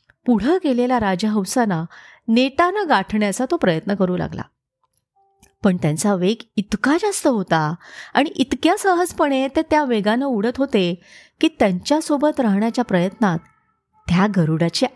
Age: 30-49